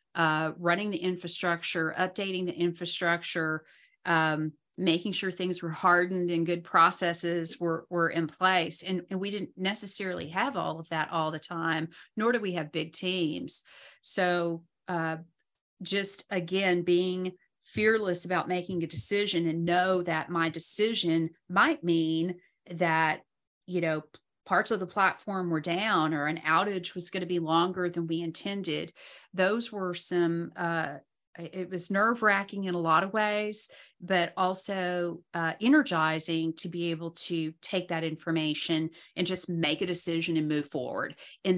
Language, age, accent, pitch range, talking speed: English, 40-59, American, 165-185 Hz, 155 wpm